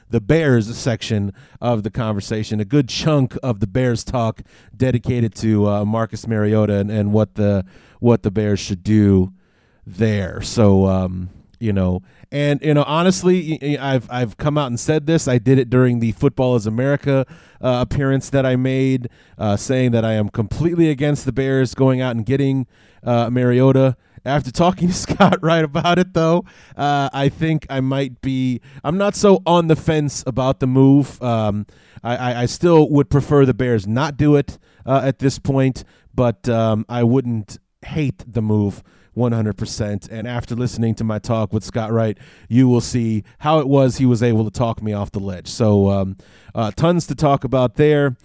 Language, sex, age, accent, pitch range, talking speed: English, male, 30-49, American, 110-140 Hz, 185 wpm